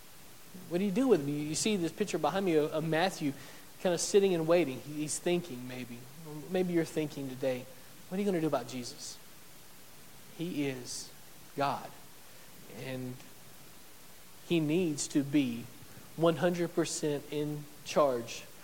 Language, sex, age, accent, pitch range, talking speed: English, male, 40-59, American, 140-175 Hz, 145 wpm